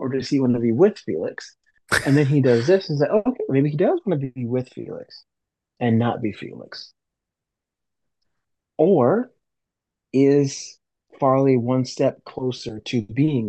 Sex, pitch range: male, 115-140 Hz